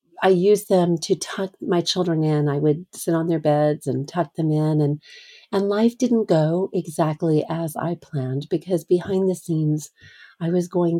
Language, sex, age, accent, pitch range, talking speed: English, female, 40-59, American, 155-190 Hz, 185 wpm